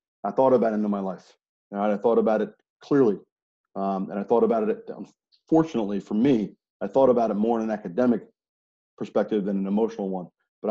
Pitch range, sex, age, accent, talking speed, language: 100-135 Hz, male, 40-59, American, 205 wpm, English